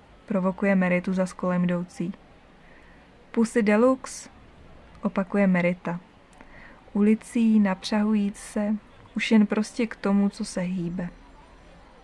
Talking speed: 100 wpm